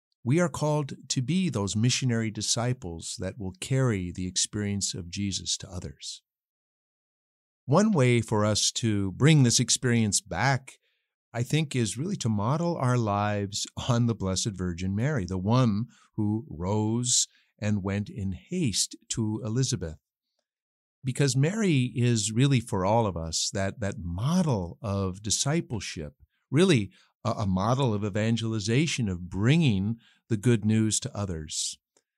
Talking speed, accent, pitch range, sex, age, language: 140 wpm, American, 100-135 Hz, male, 50-69, English